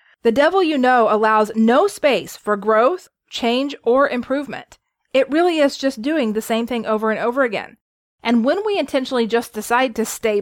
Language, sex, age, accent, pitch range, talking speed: English, female, 30-49, American, 215-285 Hz, 185 wpm